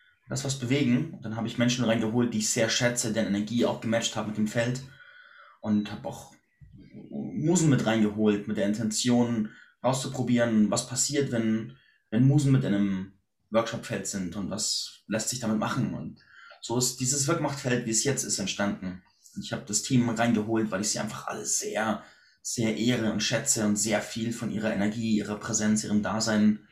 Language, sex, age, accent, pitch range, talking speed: German, male, 20-39, German, 110-130 Hz, 185 wpm